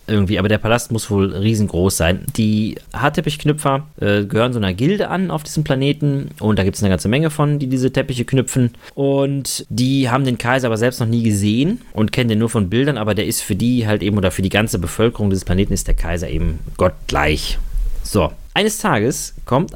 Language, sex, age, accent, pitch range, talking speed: German, male, 30-49, German, 100-130 Hz, 215 wpm